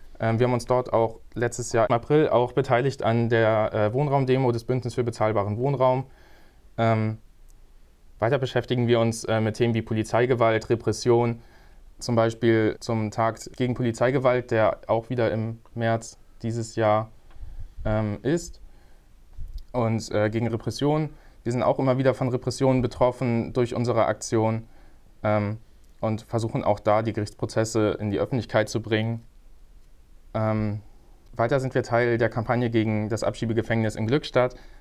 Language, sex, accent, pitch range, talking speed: German, male, German, 110-125 Hz, 135 wpm